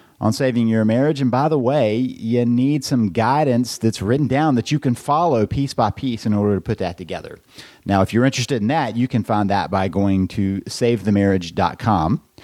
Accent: American